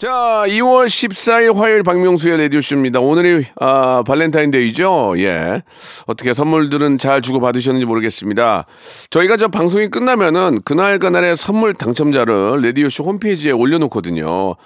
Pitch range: 145-190 Hz